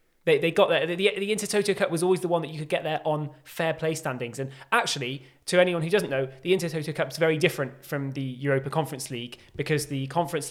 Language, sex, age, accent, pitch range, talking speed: English, male, 20-39, British, 135-160 Hz, 240 wpm